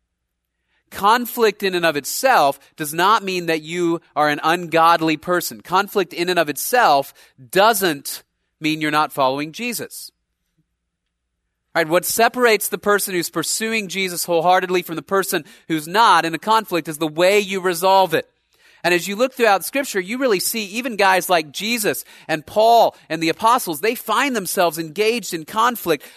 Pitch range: 160-215 Hz